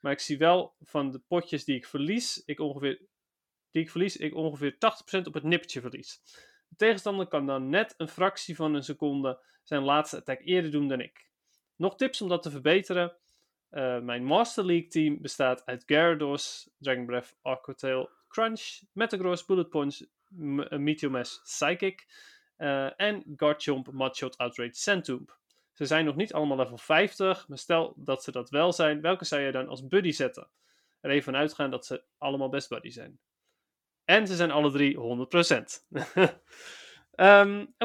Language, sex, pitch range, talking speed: Dutch, male, 140-185 Hz, 170 wpm